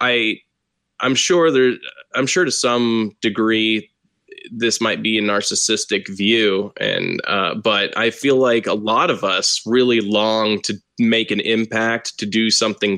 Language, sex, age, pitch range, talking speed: English, male, 20-39, 110-130 Hz, 155 wpm